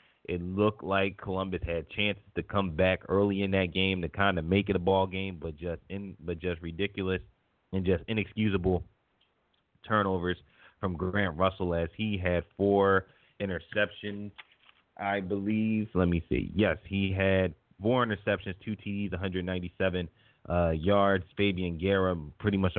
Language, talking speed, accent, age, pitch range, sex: English, 155 wpm, American, 20-39, 90-100 Hz, male